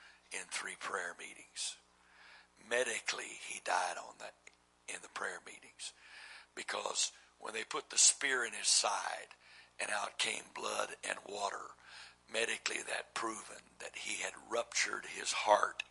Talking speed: 140 wpm